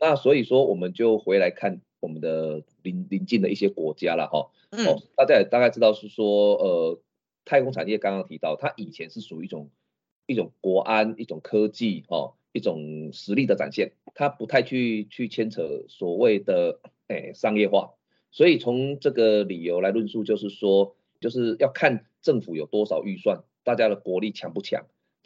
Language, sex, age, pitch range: Chinese, male, 30-49, 95-130 Hz